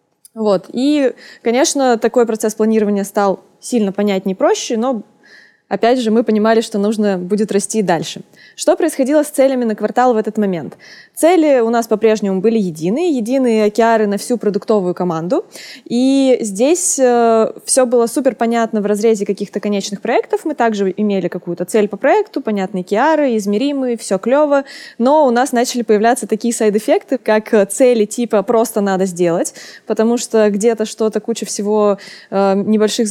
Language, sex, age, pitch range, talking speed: Russian, female, 20-39, 200-240 Hz, 160 wpm